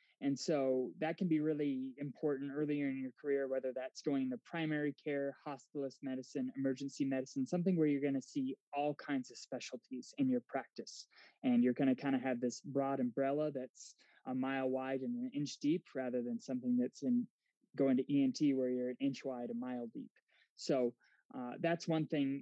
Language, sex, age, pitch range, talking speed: English, male, 20-39, 130-160 Hz, 195 wpm